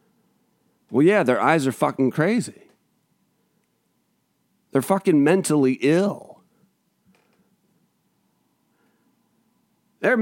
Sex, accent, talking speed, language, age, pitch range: male, American, 70 wpm, English, 40-59, 130-210 Hz